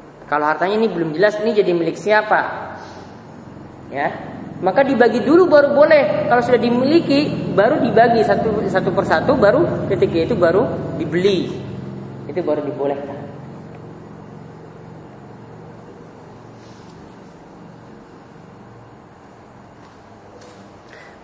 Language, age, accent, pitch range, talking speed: Indonesian, 20-39, native, 170-240 Hz, 90 wpm